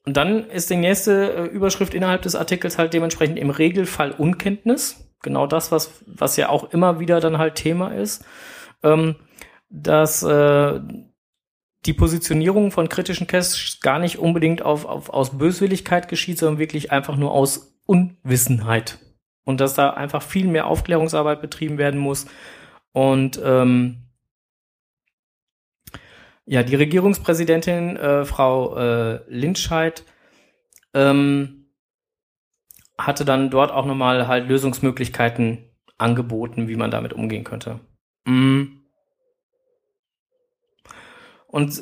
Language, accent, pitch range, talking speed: German, German, 135-175 Hz, 120 wpm